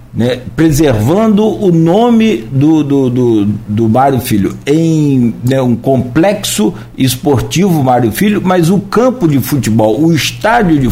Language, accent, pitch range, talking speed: Portuguese, Brazilian, 120-160 Hz, 125 wpm